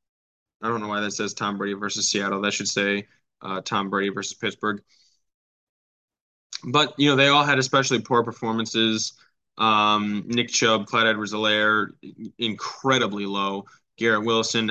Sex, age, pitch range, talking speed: male, 10-29, 105-120 Hz, 145 wpm